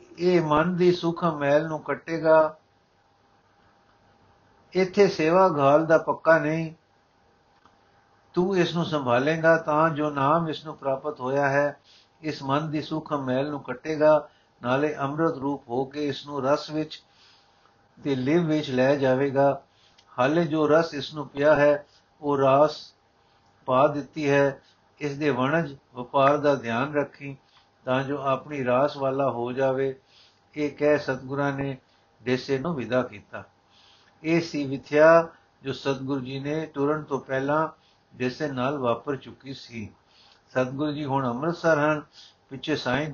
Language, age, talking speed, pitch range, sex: Punjabi, 60-79, 140 wpm, 125-150 Hz, male